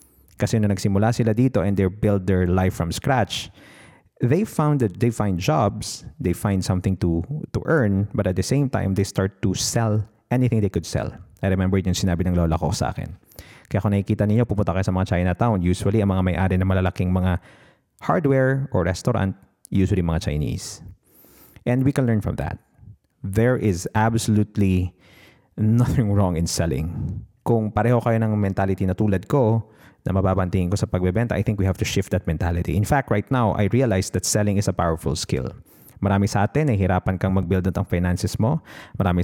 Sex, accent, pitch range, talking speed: male, native, 95-115 Hz, 190 wpm